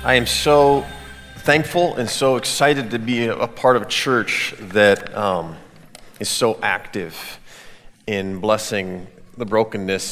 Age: 30-49